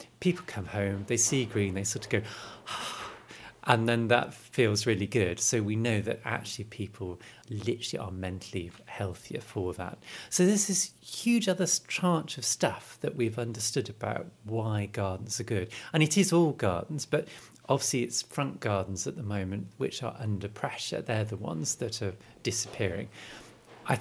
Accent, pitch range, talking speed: British, 105-135 Hz, 170 wpm